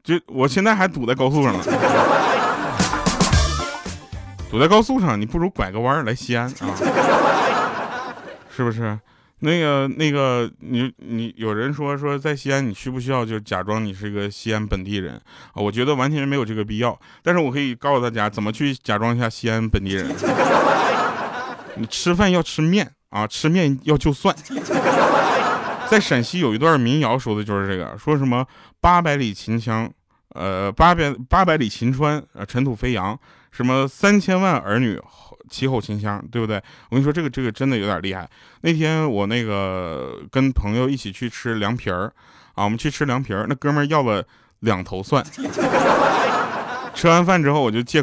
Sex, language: male, Chinese